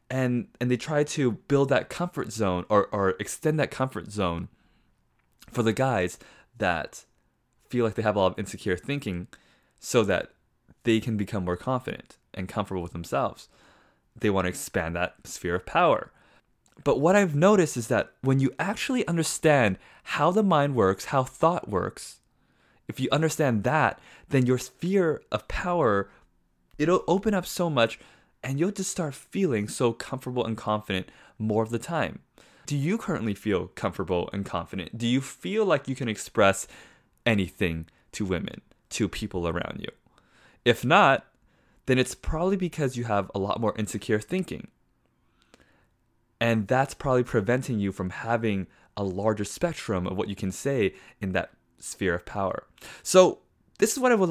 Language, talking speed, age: English, 165 wpm, 20-39